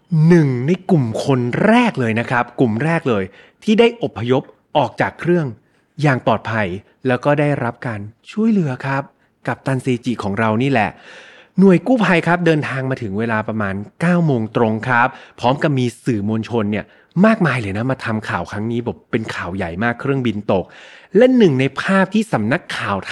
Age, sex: 30-49, male